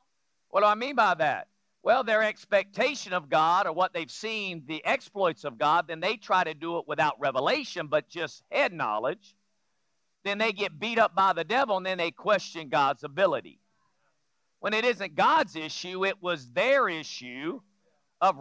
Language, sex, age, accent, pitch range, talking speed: English, male, 50-69, American, 165-210 Hz, 180 wpm